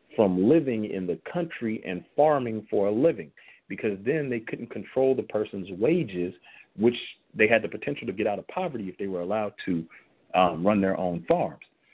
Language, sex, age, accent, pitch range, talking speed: English, male, 40-59, American, 100-135 Hz, 190 wpm